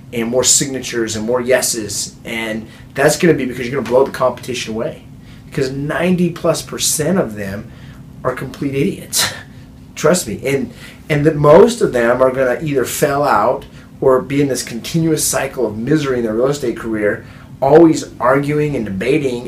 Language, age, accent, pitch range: English, 30-49, American, 120-150 Hz